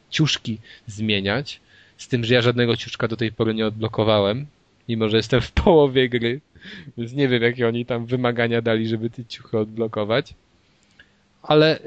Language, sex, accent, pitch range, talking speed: Polish, male, native, 105-125 Hz, 160 wpm